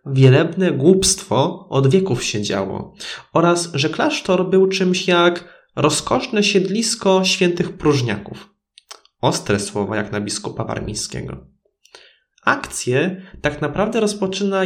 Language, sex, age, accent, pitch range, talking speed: Polish, male, 20-39, native, 130-190 Hz, 105 wpm